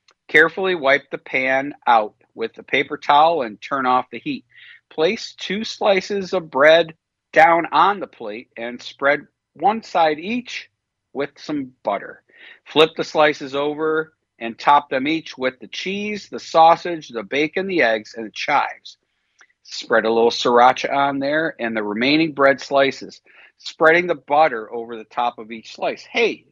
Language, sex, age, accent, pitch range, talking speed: English, male, 50-69, American, 120-165 Hz, 165 wpm